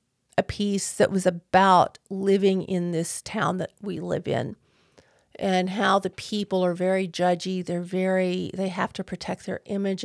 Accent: American